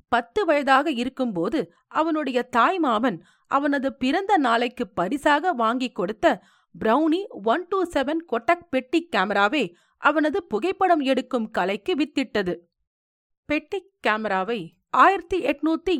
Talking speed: 100 wpm